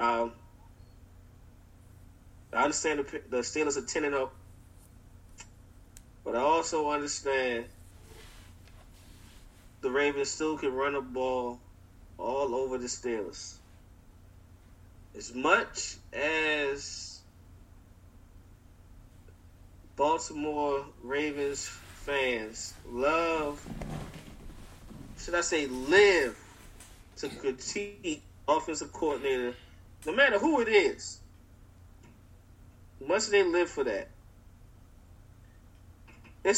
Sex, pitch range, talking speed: male, 90-150 Hz, 80 wpm